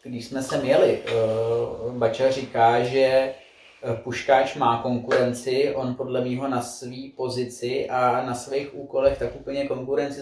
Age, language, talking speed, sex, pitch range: 20-39, Czech, 140 wpm, male, 125-140 Hz